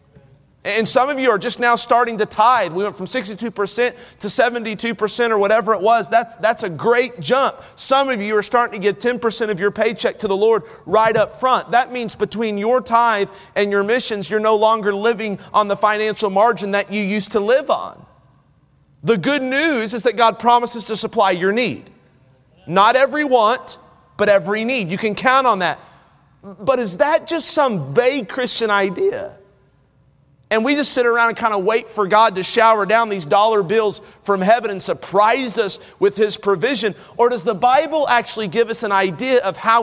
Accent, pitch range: American, 195-240 Hz